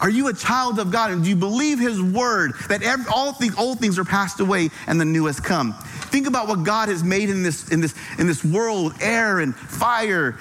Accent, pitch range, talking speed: American, 160-215 Hz, 220 wpm